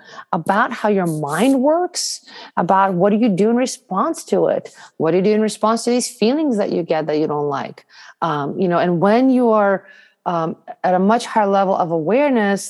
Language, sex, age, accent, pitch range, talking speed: English, female, 40-59, American, 200-245 Hz, 215 wpm